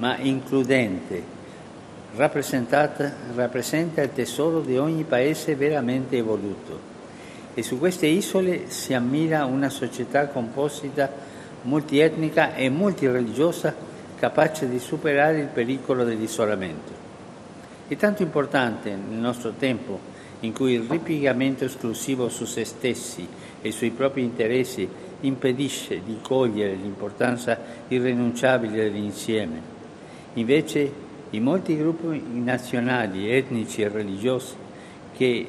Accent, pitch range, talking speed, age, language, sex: native, 115-145 Hz, 105 wpm, 50-69, Italian, male